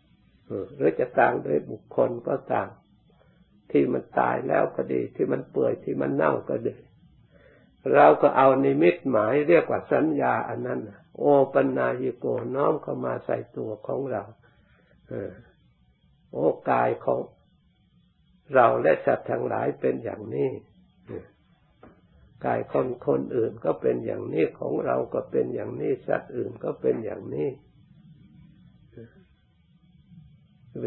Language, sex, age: Thai, male, 60-79